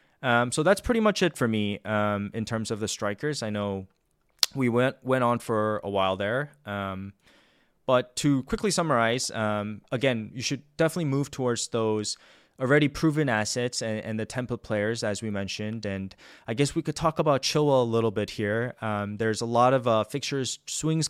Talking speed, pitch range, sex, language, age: 195 wpm, 105-140 Hz, male, English, 20-39